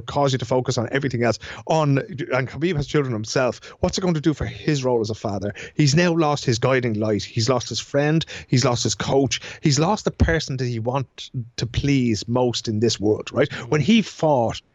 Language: English